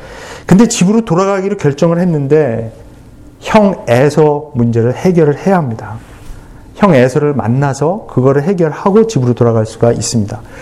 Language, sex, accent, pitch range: Korean, male, native, 120-185 Hz